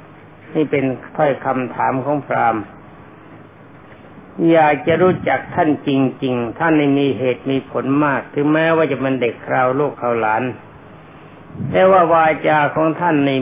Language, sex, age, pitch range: Thai, male, 60-79, 135-160 Hz